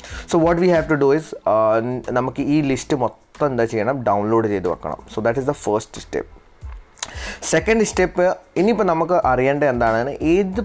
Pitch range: 115-155 Hz